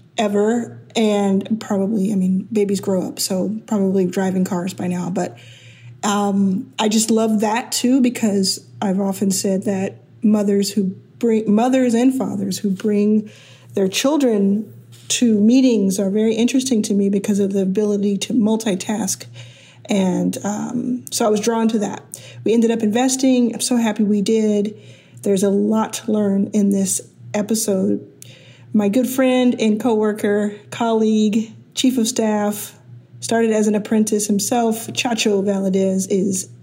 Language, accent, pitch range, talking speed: English, American, 200-230 Hz, 150 wpm